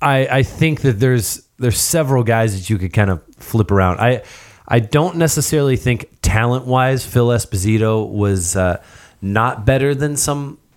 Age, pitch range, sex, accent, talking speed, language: 30-49, 95-125 Hz, male, American, 160 wpm, English